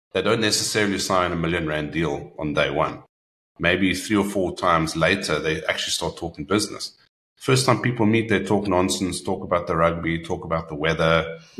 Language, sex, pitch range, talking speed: English, male, 85-105 Hz, 185 wpm